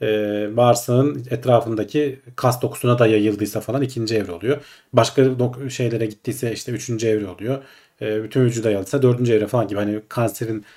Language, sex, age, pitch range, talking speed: Turkish, male, 40-59, 115-150 Hz, 160 wpm